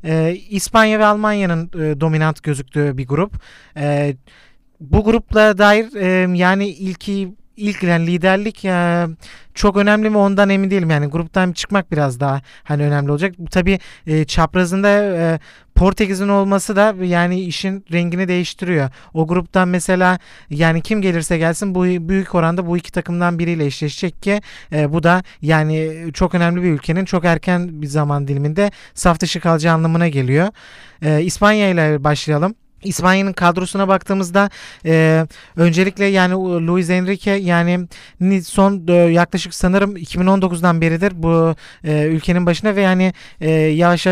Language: Turkish